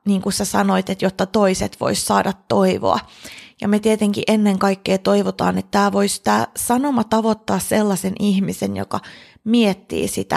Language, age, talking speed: Finnish, 20-39, 145 wpm